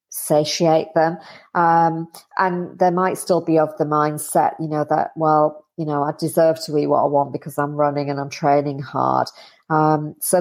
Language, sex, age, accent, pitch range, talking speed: English, female, 40-59, British, 145-165 Hz, 190 wpm